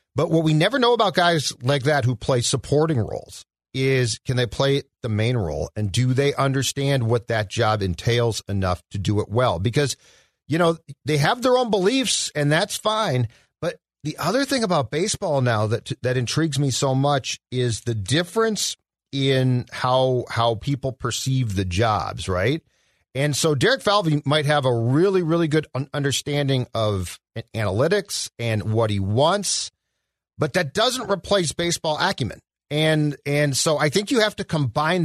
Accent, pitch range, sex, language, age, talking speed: American, 115-155 Hz, male, English, 40-59, 170 wpm